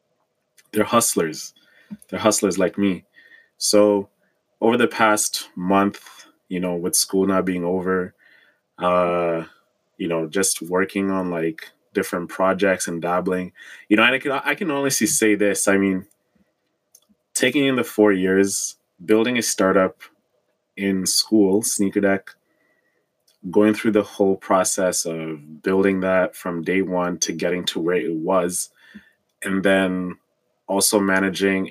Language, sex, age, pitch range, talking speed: English, male, 20-39, 90-105 Hz, 140 wpm